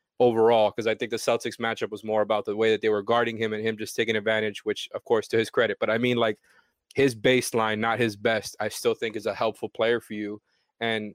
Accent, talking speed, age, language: American, 255 wpm, 20-39, English